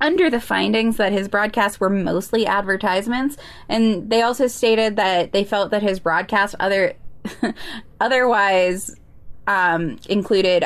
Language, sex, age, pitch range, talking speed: English, female, 10-29, 195-260 Hz, 125 wpm